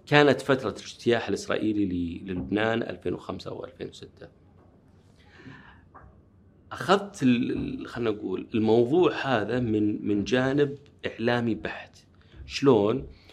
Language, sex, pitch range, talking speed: Arabic, male, 95-125 Hz, 75 wpm